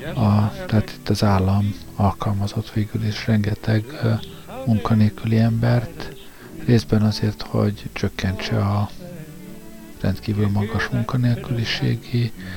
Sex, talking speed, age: male, 85 wpm, 50-69